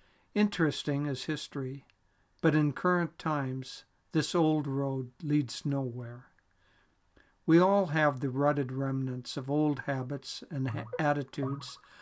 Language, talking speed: English, 115 wpm